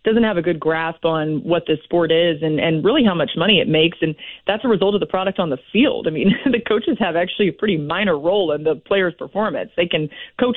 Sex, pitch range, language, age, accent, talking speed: female, 165-215 Hz, English, 30-49, American, 255 wpm